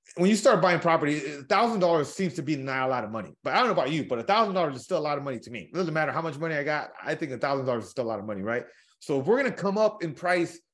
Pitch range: 135-170 Hz